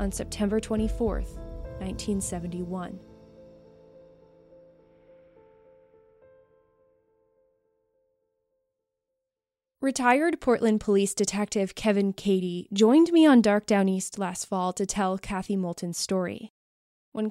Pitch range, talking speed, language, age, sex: 195-240 Hz, 85 wpm, English, 20-39, female